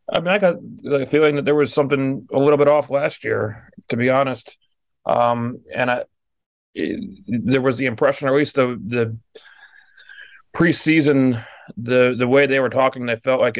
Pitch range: 120-135 Hz